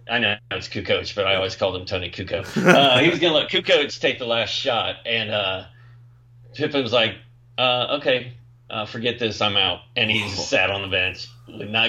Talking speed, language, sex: 205 wpm, English, male